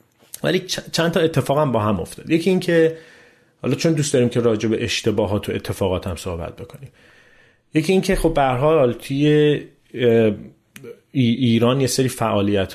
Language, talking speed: Persian, 160 wpm